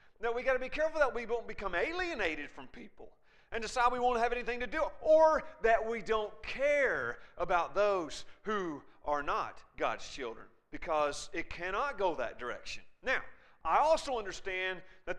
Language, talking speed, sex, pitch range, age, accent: English, 175 wpm, male, 195-295 Hz, 40-59, American